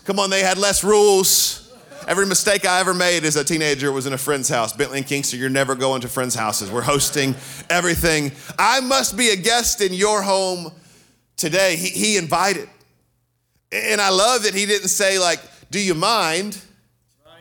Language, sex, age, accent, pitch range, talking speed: English, male, 40-59, American, 160-215 Hz, 185 wpm